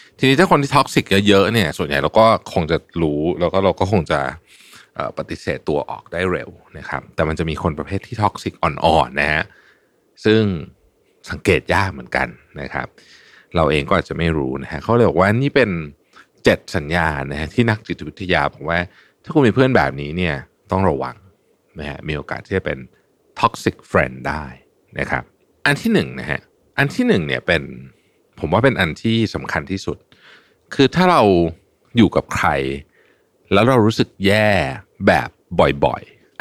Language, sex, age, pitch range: Thai, male, 60-79, 80-120 Hz